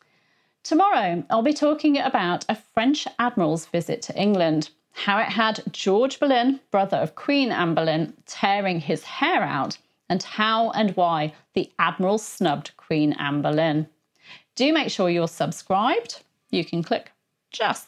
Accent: British